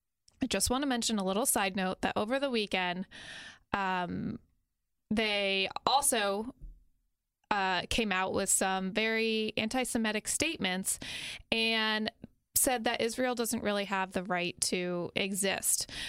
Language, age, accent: English, 20-39, American